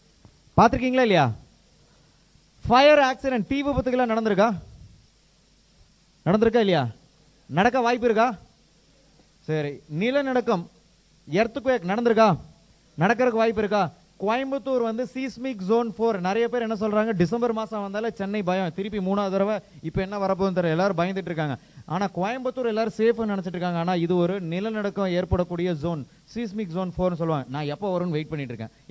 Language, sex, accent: Tamil, male, native